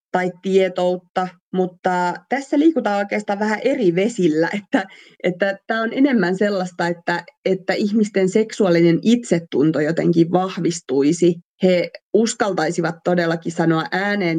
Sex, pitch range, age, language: female, 170-215 Hz, 30-49, Finnish